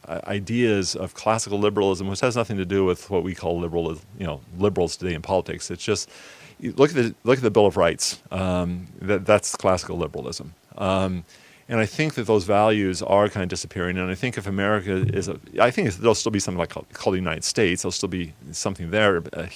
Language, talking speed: English, 235 wpm